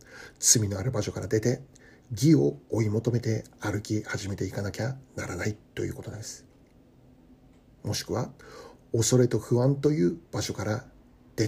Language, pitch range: Japanese, 110-140 Hz